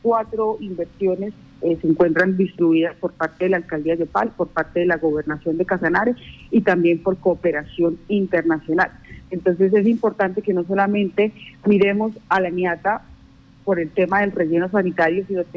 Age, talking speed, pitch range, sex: 40-59, 160 wpm, 165-200 Hz, female